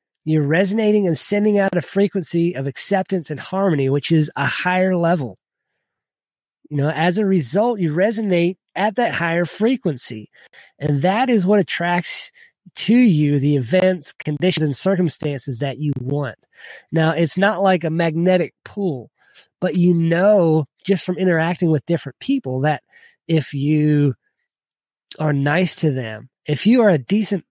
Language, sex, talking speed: English, male, 155 wpm